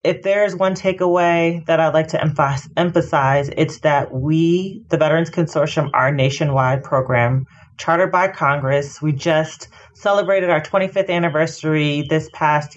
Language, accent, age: English, American, 30-49